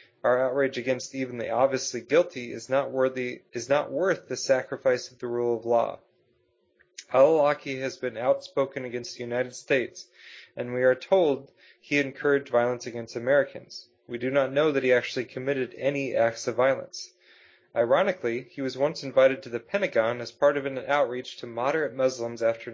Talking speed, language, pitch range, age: 175 wpm, English, 120-140 Hz, 30-49